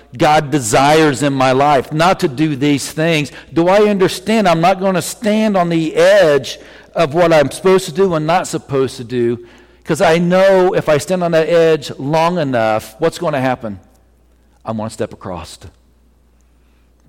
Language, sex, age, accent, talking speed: English, male, 50-69, American, 185 wpm